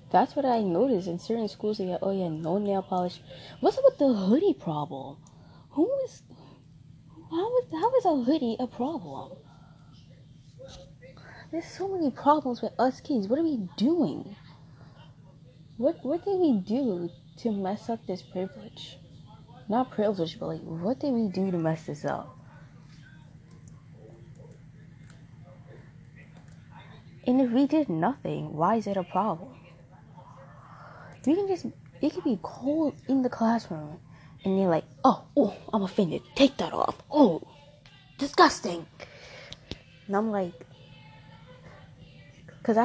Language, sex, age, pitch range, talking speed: English, female, 20-39, 150-235 Hz, 135 wpm